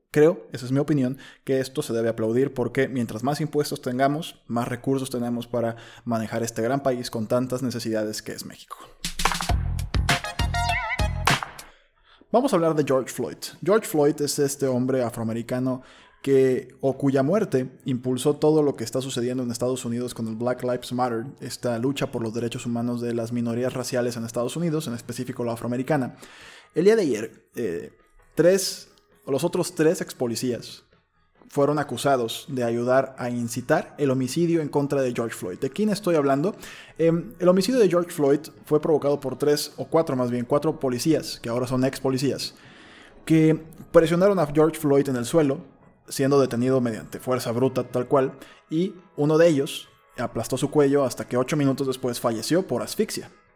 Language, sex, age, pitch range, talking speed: Spanish, male, 20-39, 120-155 Hz, 170 wpm